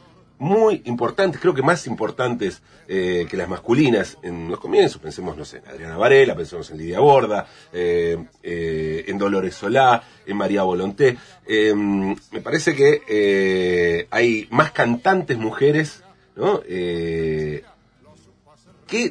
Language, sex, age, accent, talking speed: Spanish, male, 40-59, Argentinian, 135 wpm